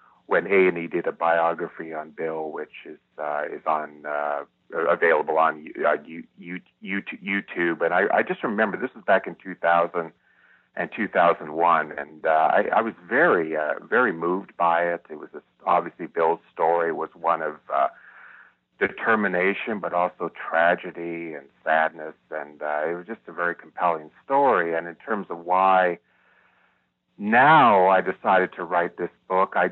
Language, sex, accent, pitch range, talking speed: English, male, American, 80-90 Hz, 155 wpm